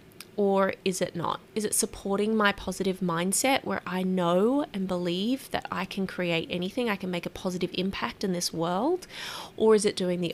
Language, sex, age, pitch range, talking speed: English, female, 20-39, 180-210 Hz, 195 wpm